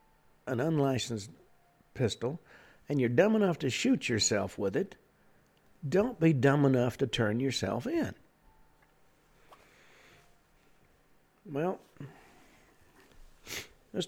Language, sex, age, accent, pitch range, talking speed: English, male, 60-79, American, 115-140 Hz, 95 wpm